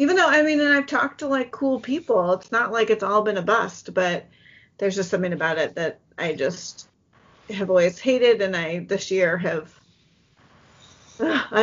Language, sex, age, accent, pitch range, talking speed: English, female, 30-49, American, 195-245 Hz, 190 wpm